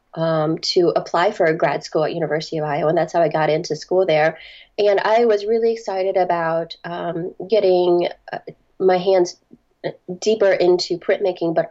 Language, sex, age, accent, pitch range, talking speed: English, female, 30-49, American, 165-200 Hz, 175 wpm